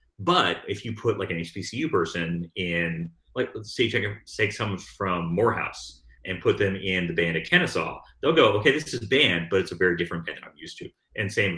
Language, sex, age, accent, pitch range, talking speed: English, male, 30-49, American, 85-105 Hz, 225 wpm